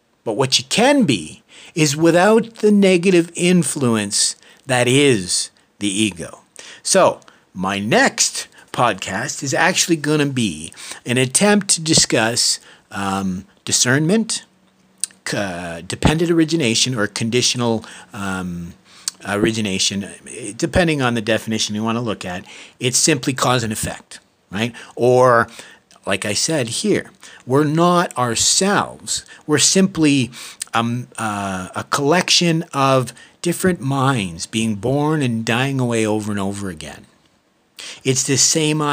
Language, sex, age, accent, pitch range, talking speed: English, male, 50-69, American, 110-155 Hz, 120 wpm